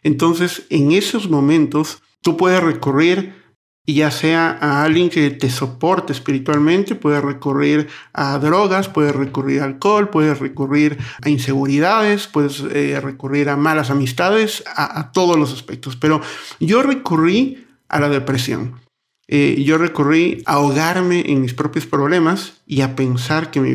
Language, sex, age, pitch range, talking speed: Spanish, male, 50-69, 135-155 Hz, 145 wpm